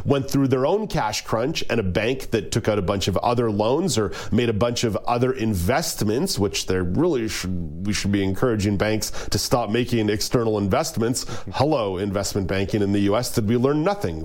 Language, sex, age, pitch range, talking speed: English, male, 40-59, 100-130 Hz, 200 wpm